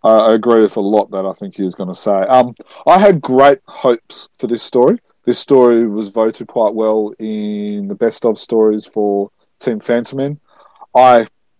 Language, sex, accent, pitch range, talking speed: English, male, Australian, 105-135 Hz, 195 wpm